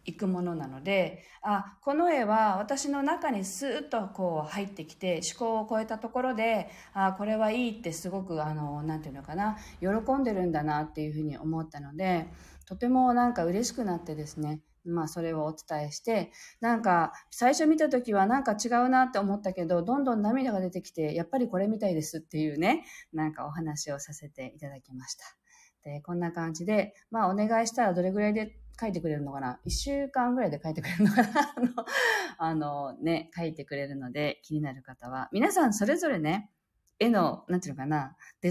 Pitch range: 155-220 Hz